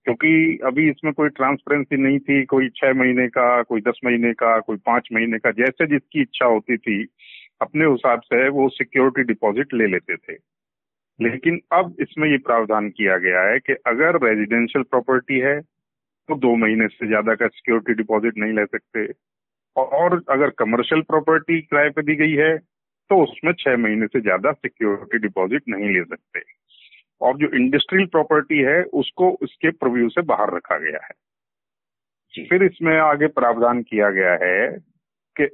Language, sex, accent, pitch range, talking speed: Hindi, male, native, 105-150 Hz, 165 wpm